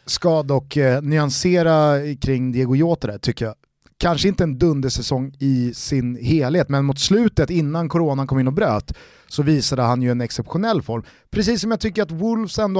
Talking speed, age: 180 wpm, 30-49